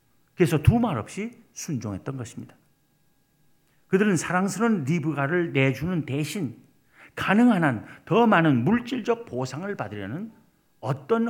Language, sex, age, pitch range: Korean, male, 50-69, 140-195 Hz